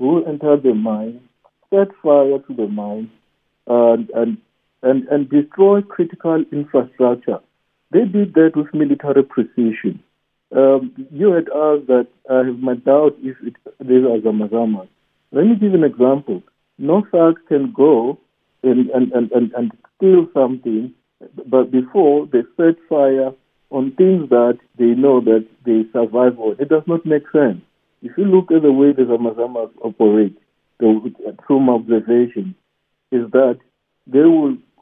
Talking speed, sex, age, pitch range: 150 wpm, male, 50-69, 115-150 Hz